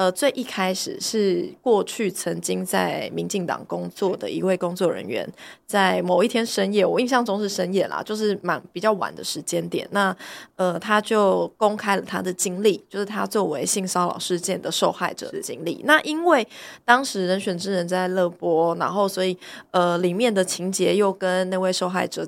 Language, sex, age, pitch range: Chinese, female, 20-39, 180-230 Hz